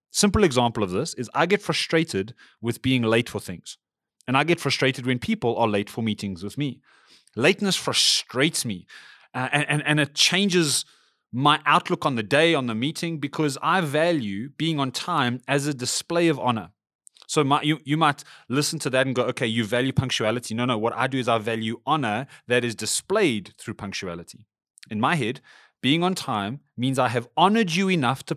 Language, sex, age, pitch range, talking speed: English, male, 30-49, 115-150 Hz, 195 wpm